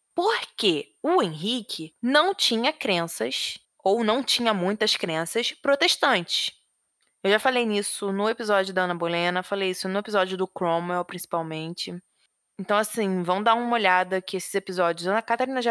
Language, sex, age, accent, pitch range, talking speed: Portuguese, female, 20-39, Brazilian, 190-255 Hz, 155 wpm